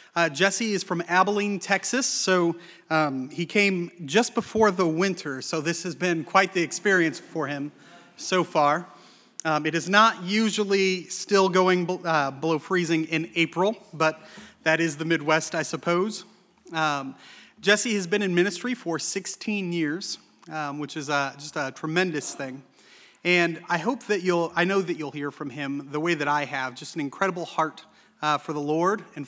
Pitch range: 150-195 Hz